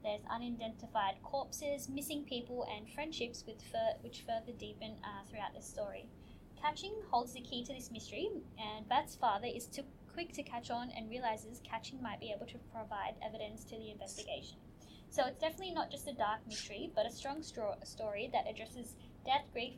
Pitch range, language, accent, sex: 215-275 Hz, English, Australian, female